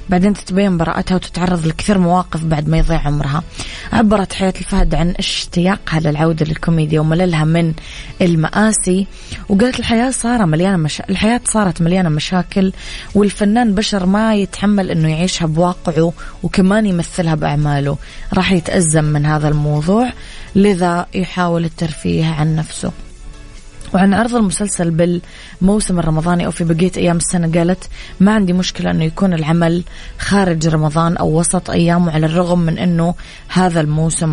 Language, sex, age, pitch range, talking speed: English, female, 20-39, 160-190 Hz, 130 wpm